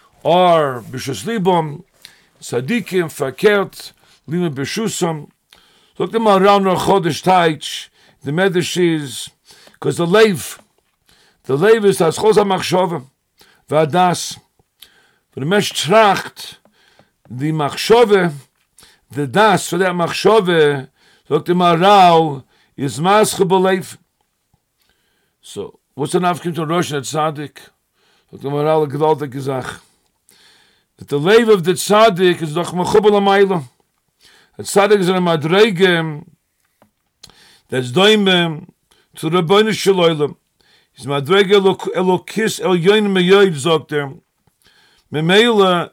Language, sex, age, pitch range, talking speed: English, male, 50-69, 155-200 Hz, 95 wpm